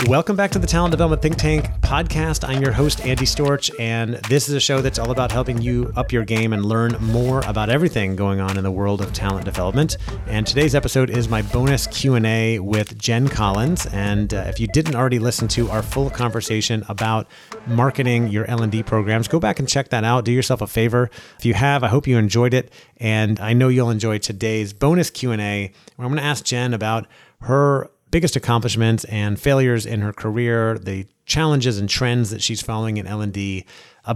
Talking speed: 205 wpm